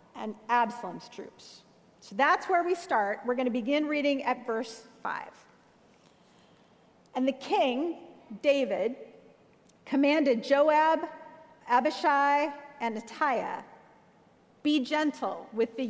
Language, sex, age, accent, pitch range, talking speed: English, female, 40-59, American, 225-290 Hz, 105 wpm